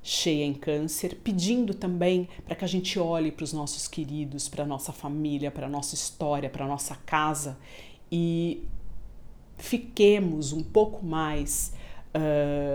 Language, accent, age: Portuguese, Brazilian, 50-69